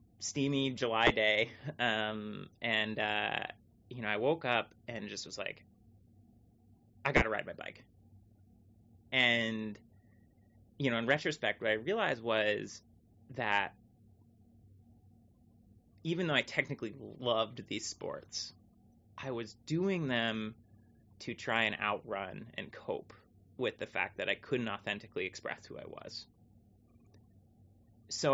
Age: 30-49